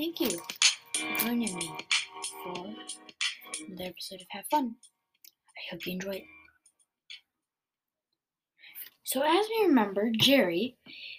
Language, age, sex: English, 20-39, female